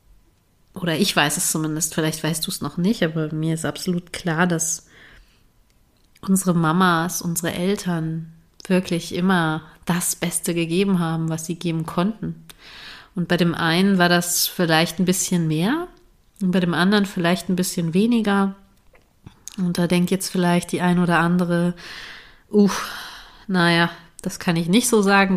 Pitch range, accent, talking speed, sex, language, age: 165-185 Hz, German, 155 wpm, female, German, 30-49